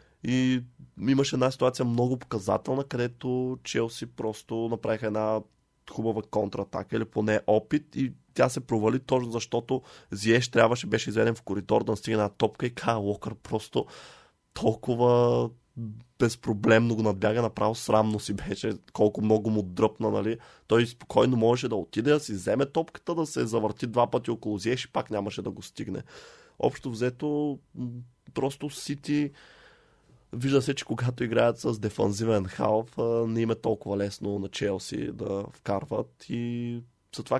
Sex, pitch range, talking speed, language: male, 110-125 Hz, 150 wpm, Bulgarian